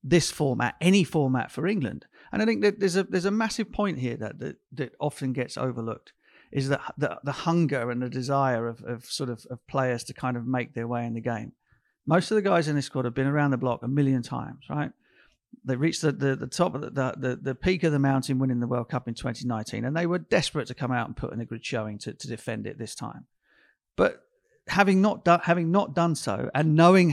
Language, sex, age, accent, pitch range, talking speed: English, male, 50-69, British, 125-150 Hz, 250 wpm